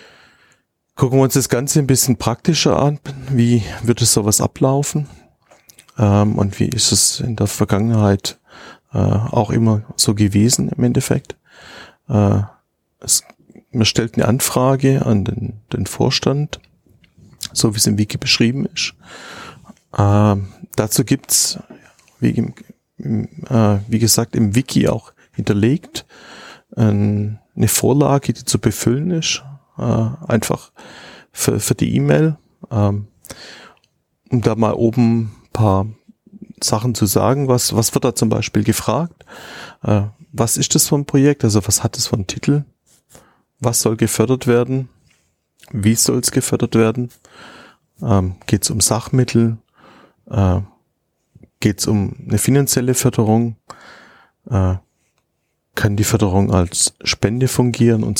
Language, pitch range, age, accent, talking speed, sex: German, 105-130 Hz, 30-49, German, 135 wpm, male